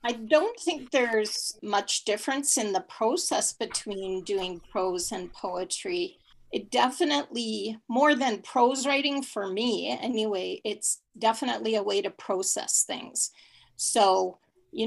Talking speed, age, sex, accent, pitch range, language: 130 wpm, 40-59, female, American, 200-255 Hz, English